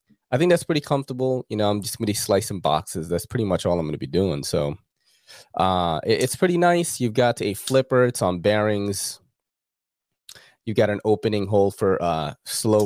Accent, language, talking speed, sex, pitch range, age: American, English, 200 wpm, male, 90-125 Hz, 20-39